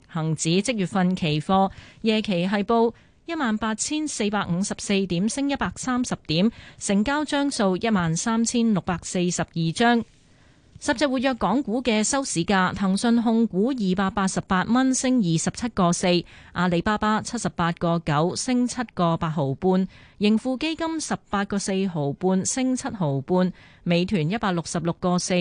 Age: 30-49